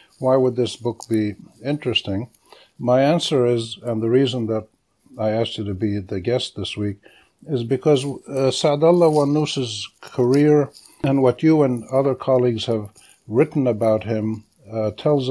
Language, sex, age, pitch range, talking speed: English, male, 60-79, 110-140 Hz, 155 wpm